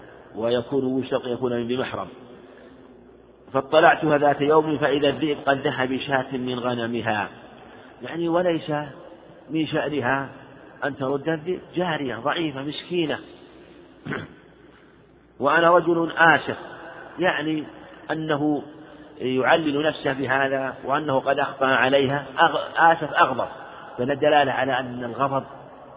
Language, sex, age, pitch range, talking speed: Arabic, male, 50-69, 125-150 Hz, 100 wpm